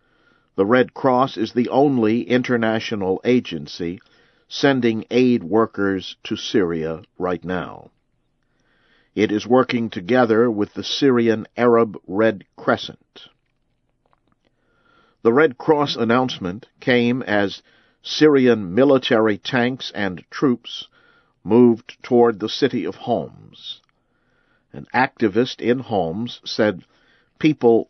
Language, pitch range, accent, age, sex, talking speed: English, 105-125 Hz, American, 50-69, male, 105 wpm